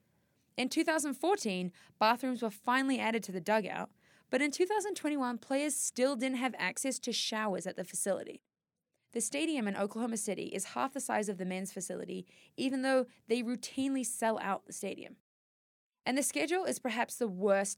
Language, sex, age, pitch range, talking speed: English, female, 20-39, 190-260 Hz, 170 wpm